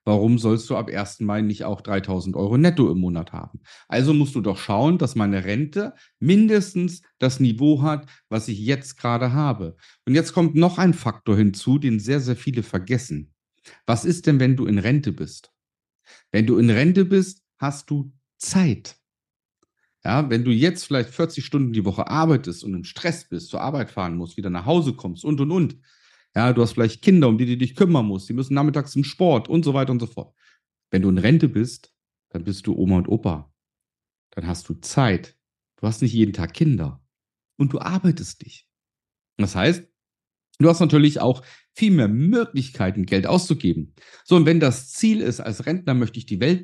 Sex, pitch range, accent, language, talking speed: male, 105-155 Hz, German, German, 195 wpm